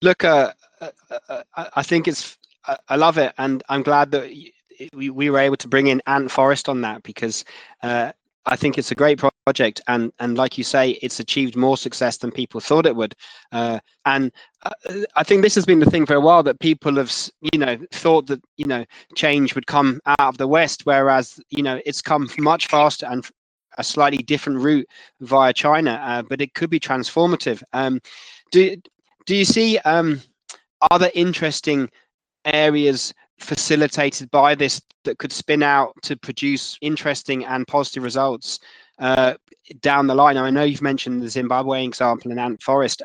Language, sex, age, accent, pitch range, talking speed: English, male, 20-39, British, 130-150 Hz, 180 wpm